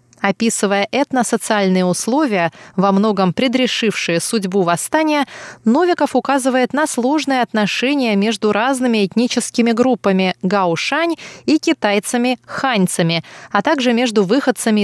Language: Russian